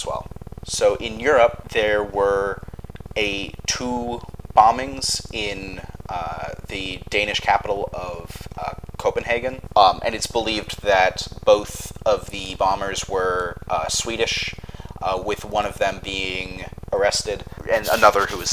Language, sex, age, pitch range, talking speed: English, male, 30-49, 95-110 Hz, 125 wpm